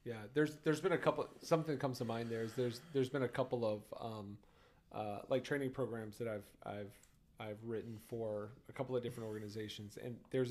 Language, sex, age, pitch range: English, male, 30-49, 115-150 Hz